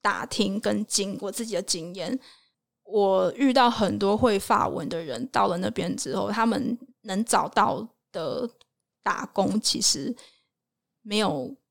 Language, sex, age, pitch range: Chinese, female, 20-39, 205-250 Hz